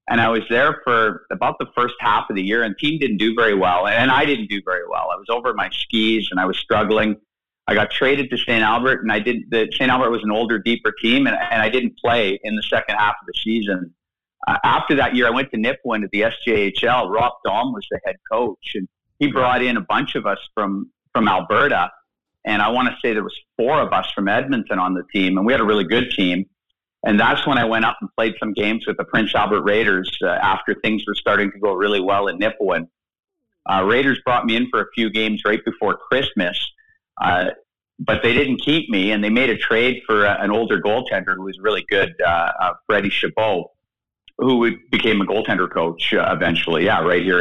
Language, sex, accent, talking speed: English, male, American, 230 wpm